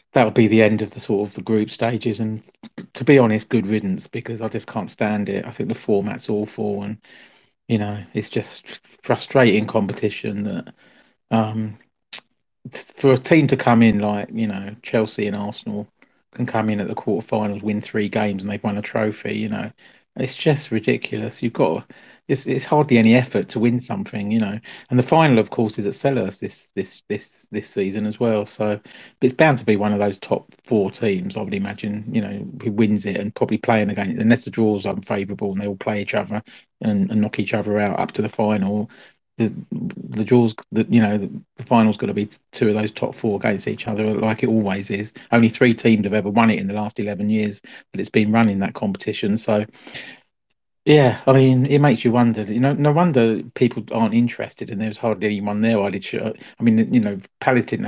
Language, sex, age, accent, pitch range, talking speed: English, male, 40-59, British, 105-120 Hz, 215 wpm